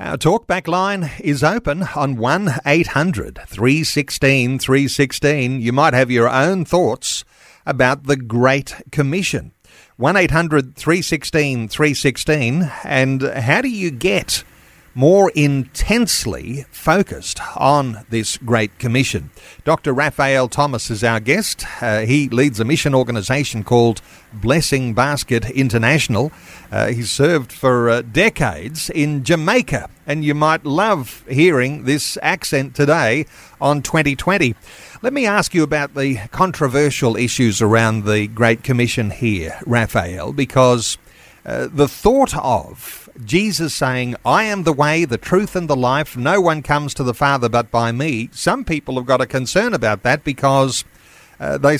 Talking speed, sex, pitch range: 130 wpm, male, 120-150 Hz